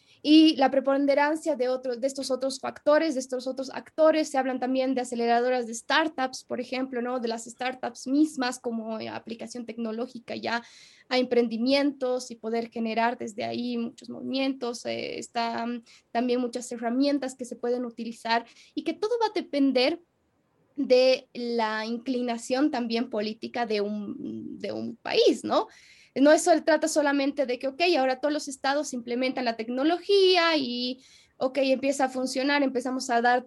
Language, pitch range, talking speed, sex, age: Spanish, 240-285 Hz, 160 wpm, female, 20-39